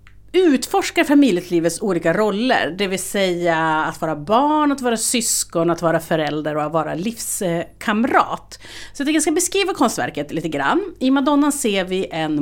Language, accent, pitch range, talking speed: Swedish, native, 170-245 Hz, 165 wpm